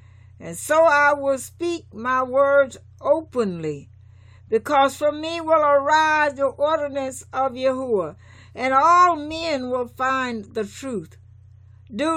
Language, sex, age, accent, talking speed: English, female, 60-79, American, 125 wpm